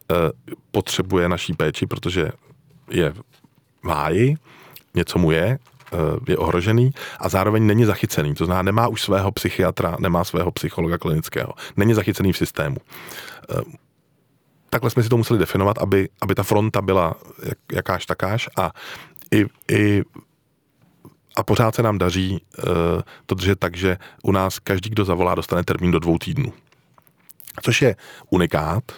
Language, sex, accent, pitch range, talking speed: Czech, male, native, 90-110 Hz, 140 wpm